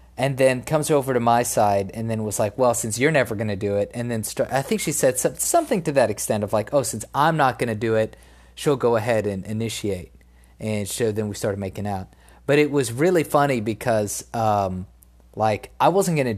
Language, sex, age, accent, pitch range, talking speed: English, male, 30-49, American, 100-135 Hz, 230 wpm